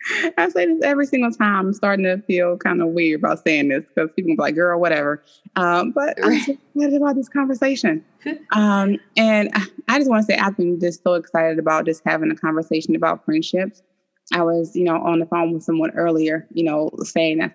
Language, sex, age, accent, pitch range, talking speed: English, female, 20-39, American, 160-215 Hz, 215 wpm